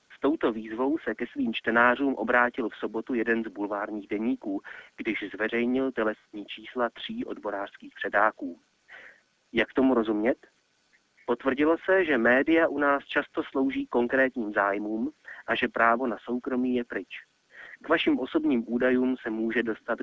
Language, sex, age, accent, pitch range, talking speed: Czech, male, 30-49, native, 110-135 Hz, 140 wpm